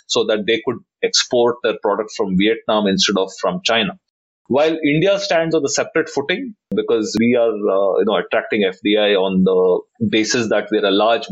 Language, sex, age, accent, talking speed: English, male, 30-49, Indian, 185 wpm